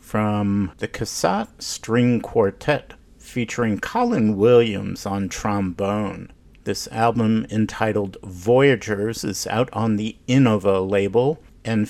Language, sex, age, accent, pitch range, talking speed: English, male, 50-69, American, 100-120 Hz, 105 wpm